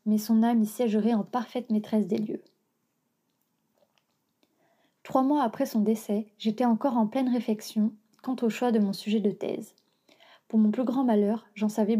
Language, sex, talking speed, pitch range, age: French, female, 175 wpm, 210-235 Hz, 20-39